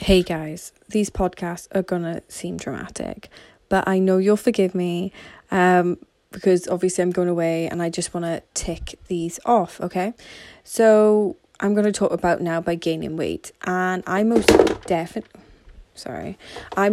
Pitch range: 175-200 Hz